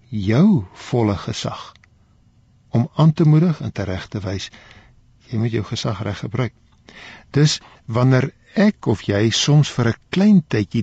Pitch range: 105-150 Hz